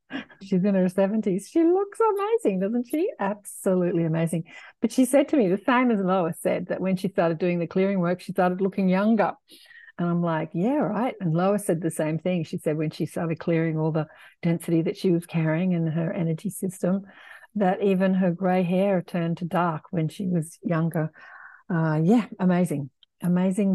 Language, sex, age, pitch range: English, female, 60-79, 160-195 Hz